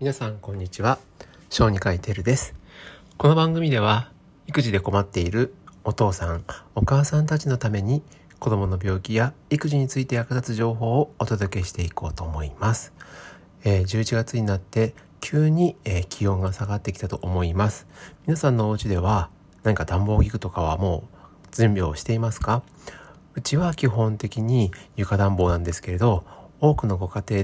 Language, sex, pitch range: Japanese, male, 95-125 Hz